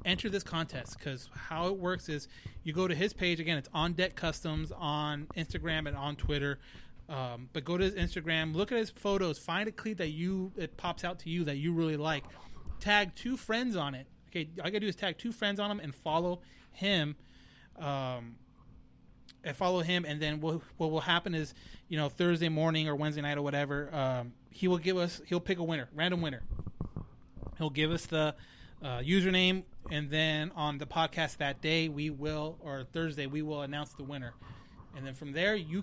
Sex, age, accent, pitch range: male, 30-49, American, 150-185 Hz